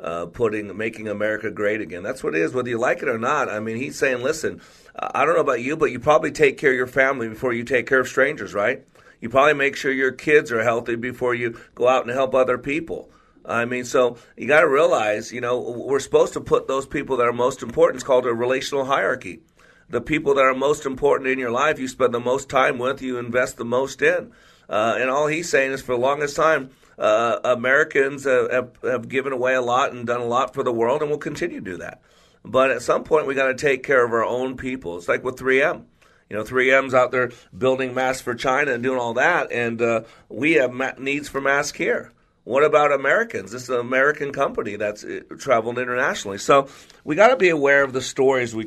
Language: English